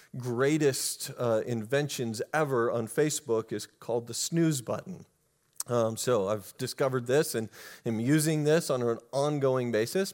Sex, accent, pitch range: male, American, 125-175 Hz